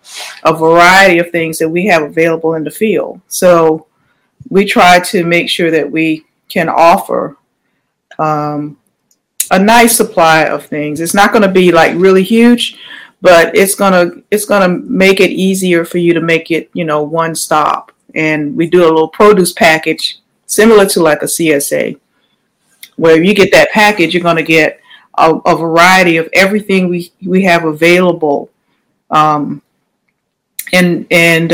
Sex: female